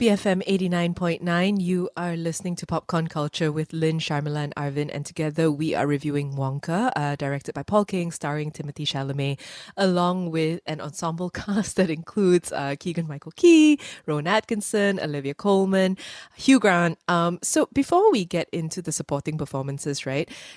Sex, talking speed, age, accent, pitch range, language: female, 155 wpm, 20-39, Malaysian, 145-180 Hz, English